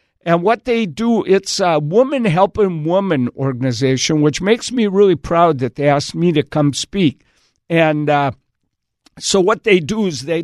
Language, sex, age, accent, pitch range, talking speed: English, male, 50-69, American, 140-190 Hz, 170 wpm